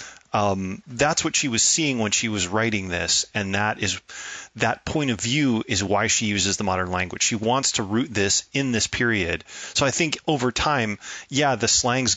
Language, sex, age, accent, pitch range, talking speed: English, male, 30-49, American, 100-120 Hz, 200 wpm